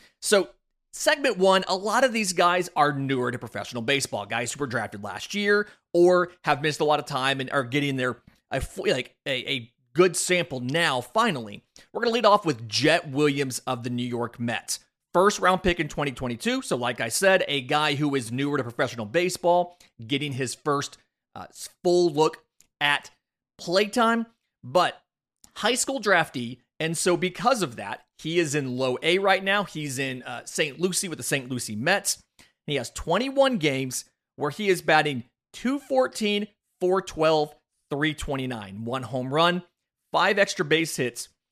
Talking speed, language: 170 wpm, English